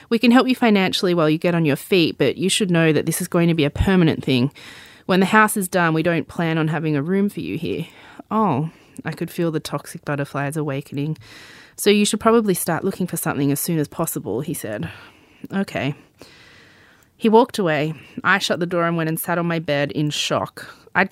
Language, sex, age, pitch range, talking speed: English, female, 20-39, 150-185 Hz, 225 wpm